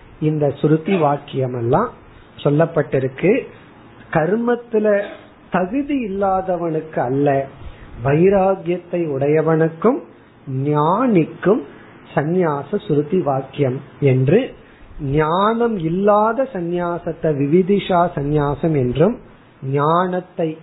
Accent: native